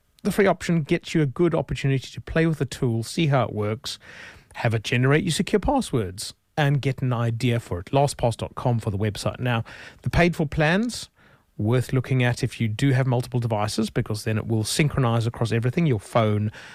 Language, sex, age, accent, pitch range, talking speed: English, male, 30-49, British, 110-150 Hz, 200 wpm